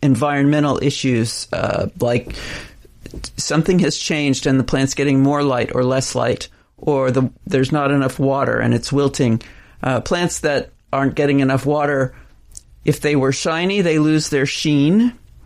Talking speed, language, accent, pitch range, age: 155 wpm, English, American, 135-160 Hz, 40-59